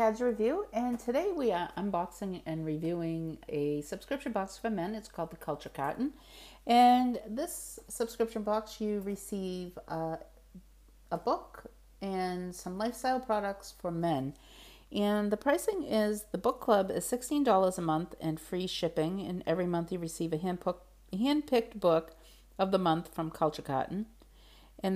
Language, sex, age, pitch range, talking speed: English, female, 40-59, 160-215 Hz, 150 wpm